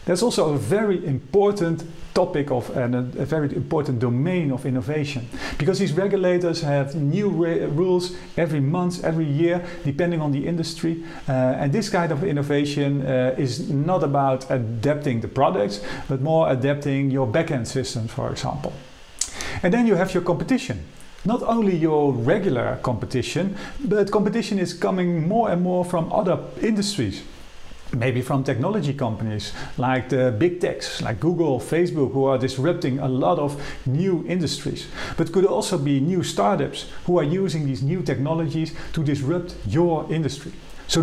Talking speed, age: 155 wpm, 50-69